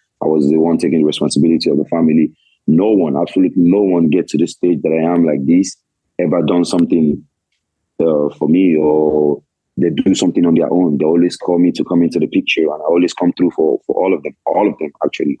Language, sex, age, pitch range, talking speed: English, male, 30-49, 80-90 Hz, 230 wpm